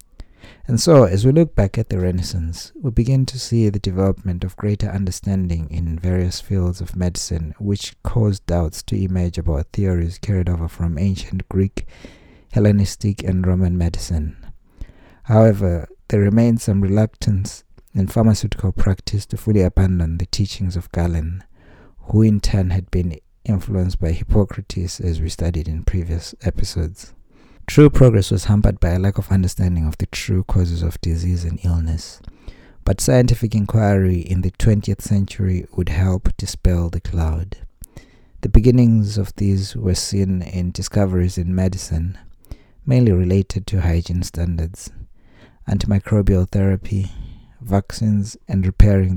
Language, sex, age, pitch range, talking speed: English, male, 60-79, 85-100 Hz, 145 wpm